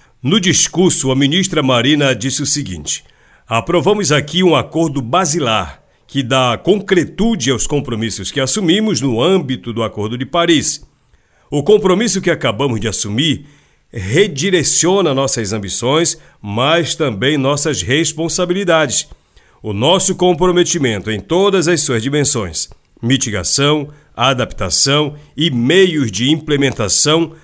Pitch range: 130-165 Hz